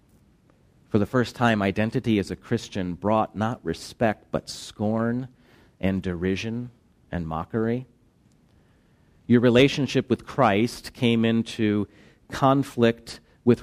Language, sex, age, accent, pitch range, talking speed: English, male, 40-59, American, 95-120 Hz, 110 wpm